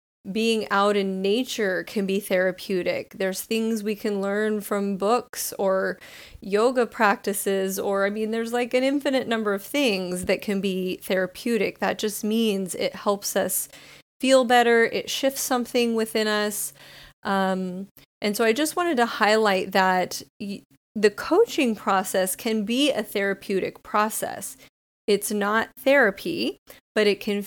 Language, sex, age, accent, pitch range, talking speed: English, female, 30-49, American, 195-235 Hz, 145 wpm